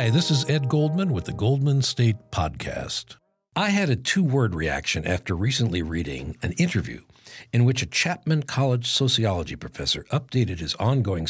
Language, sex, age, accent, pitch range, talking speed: English, male, 60-79, American, 90-135 Hz, 155 wpm